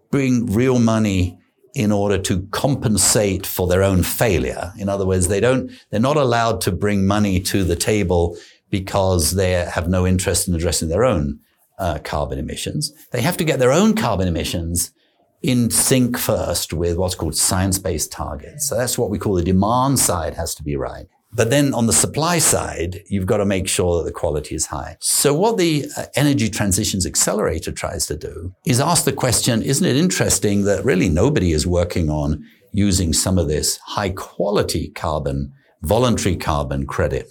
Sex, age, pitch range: male, 60-79, 85-115 Hz